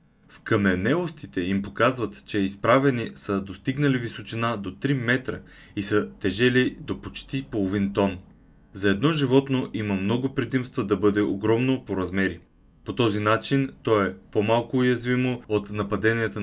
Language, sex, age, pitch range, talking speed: Bulgarian, male, 20-39, 100-125 Hz, 140 wpm